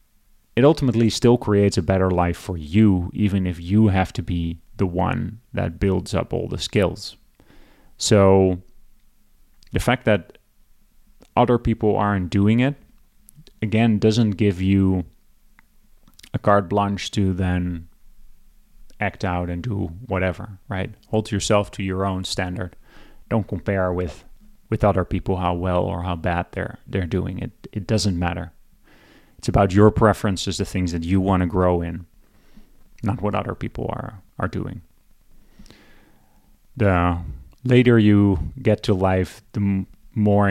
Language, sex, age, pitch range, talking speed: English, male, 30-49, 90-110 Hz, 145 wpm